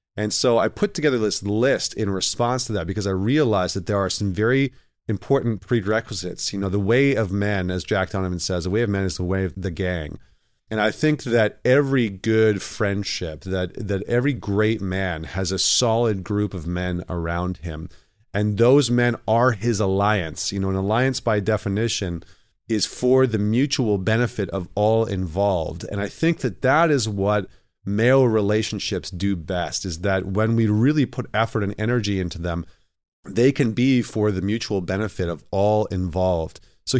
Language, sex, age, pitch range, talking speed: English, male, 30-49, 95-115 Hz, 185 wpm